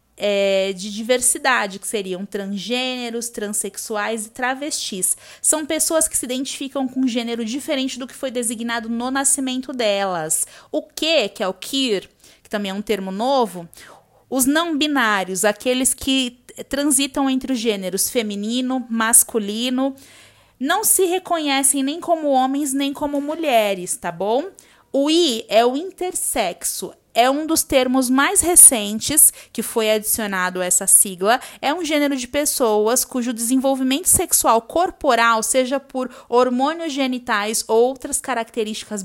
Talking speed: 140 wpm